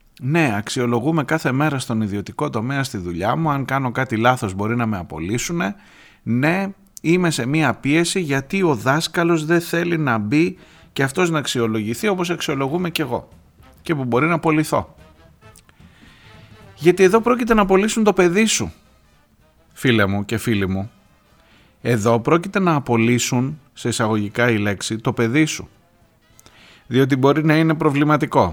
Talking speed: 150 wpm